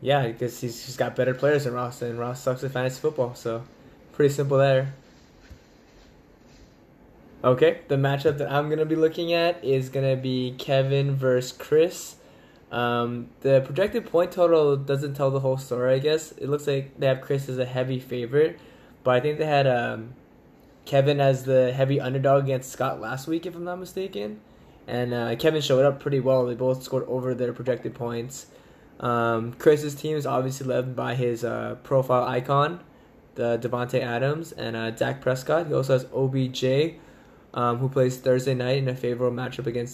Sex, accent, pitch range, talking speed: male, American, 125-145 Hz, 185 wpm